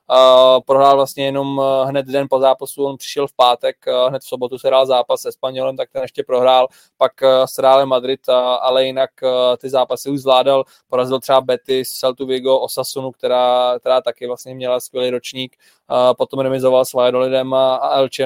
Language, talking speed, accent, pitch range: Czech, 160 wpm, native, 130-140 Hz